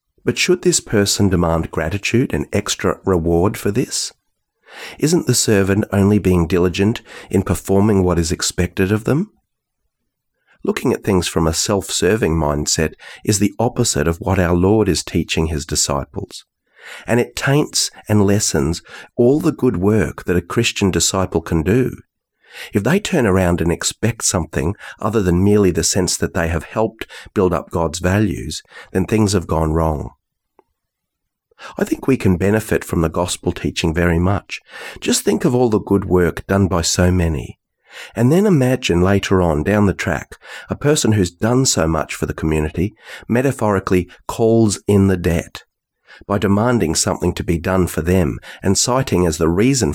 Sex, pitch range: male, 85-110 Hz